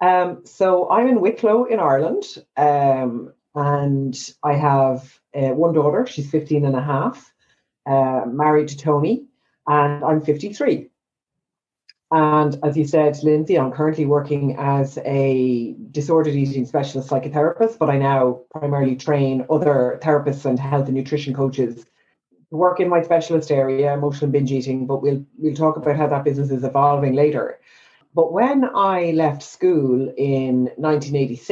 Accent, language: Irish, English